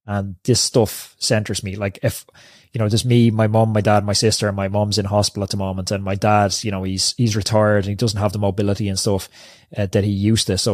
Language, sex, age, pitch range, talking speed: English, male, 20-39, 105-125 Hz, 265 wpm